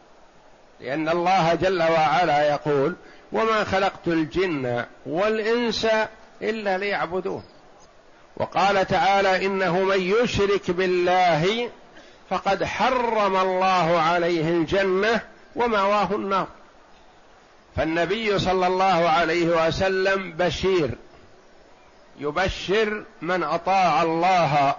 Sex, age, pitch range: male, 50-69, 165-195 Hz